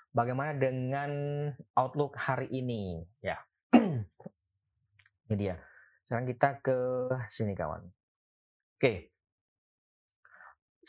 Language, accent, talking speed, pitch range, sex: Indonesian, native, 85 wpm, 105-135 Hz, male